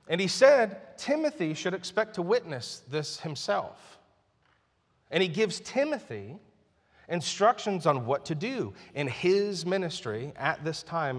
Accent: American